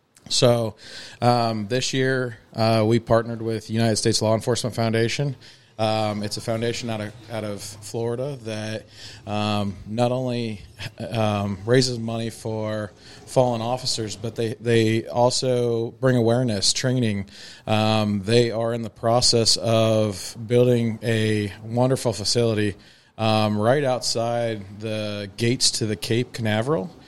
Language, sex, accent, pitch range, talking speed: English, male, American, 105-120 Hz, 130 wpm